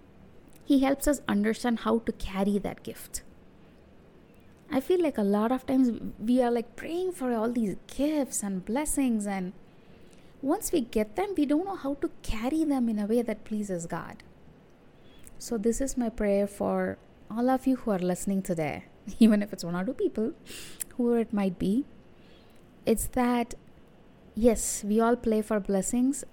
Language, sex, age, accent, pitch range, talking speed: English, female, 20-39, Indian, 195-245 Hz, 175 wpm